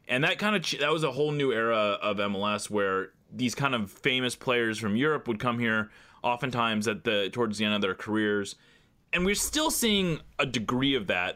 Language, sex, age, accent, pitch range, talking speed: English, male, 30-49, American, 110-150 Hz, 210 wpm